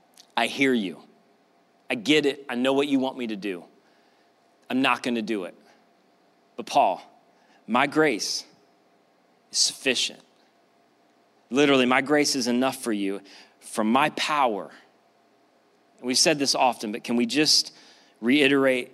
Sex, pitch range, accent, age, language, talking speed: male, 115-135 Hz, American, 30-49, English, 140 wpm